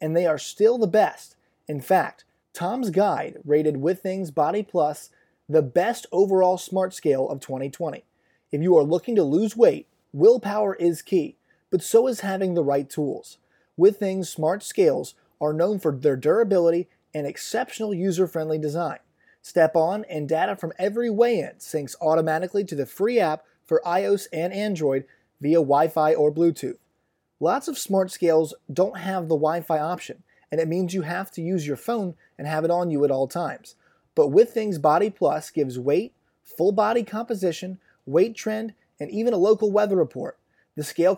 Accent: American